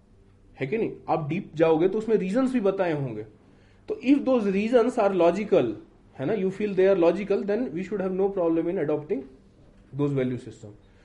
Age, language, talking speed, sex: 30-49, Hindi, 190 wpm, male